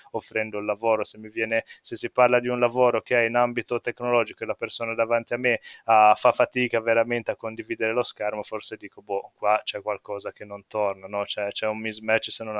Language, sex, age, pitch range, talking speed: Italian, male, 20-39, 115-130 Hz, 225 wpm